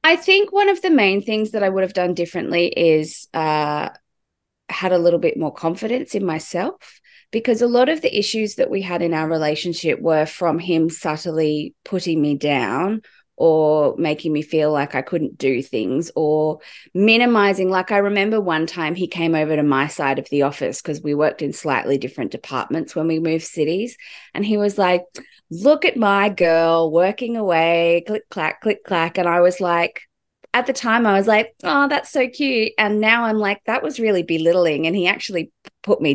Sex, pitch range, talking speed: female, 155-205 Hz, 200 wpm